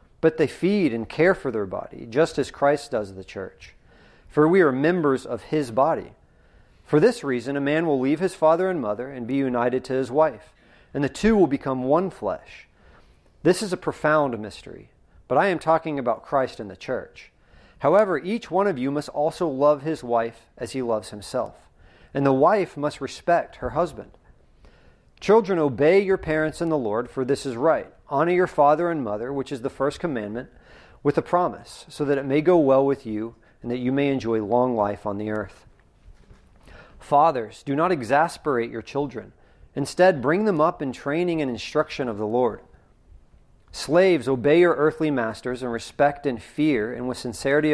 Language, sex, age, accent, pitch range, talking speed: English, male, 40-59, American, 115-155 Hz, 190 wpm